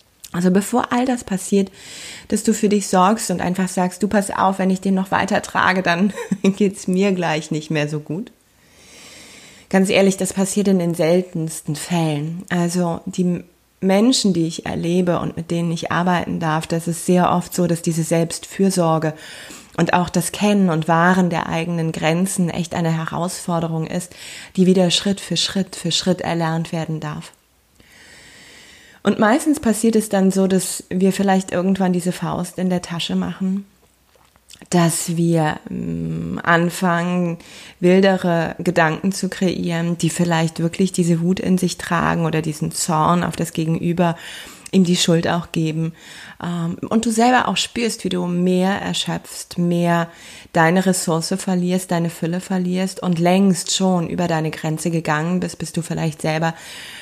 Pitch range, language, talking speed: 165-190 Hz, German, 160 wpm